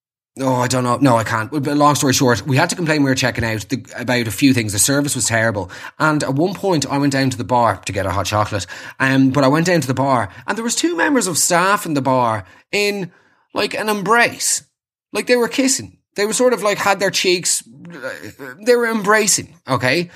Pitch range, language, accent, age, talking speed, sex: 115-165 Hz, English, Irish, 20-39, 240 wpm, male